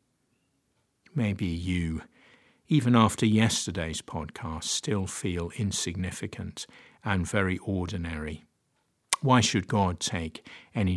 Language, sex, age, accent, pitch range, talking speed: English, male, 50-69, British, 90-115 Hz, 95 wpm